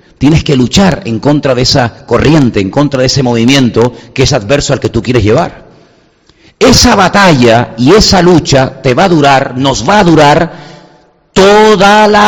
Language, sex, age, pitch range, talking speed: Spanish, male, 50-69, 120-170 Hz, 175 wpm